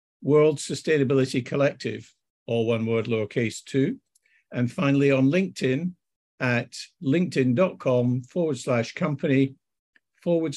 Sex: male